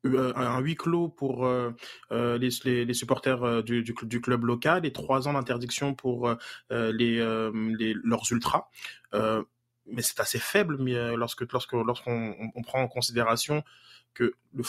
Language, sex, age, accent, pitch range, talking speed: French, male, 20-39, French, 120-140 Hz, 170 wpm